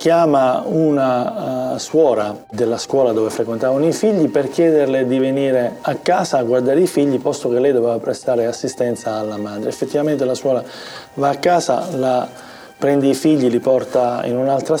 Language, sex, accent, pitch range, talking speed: Italian, male, native, 120-145 Hz, 170 wpm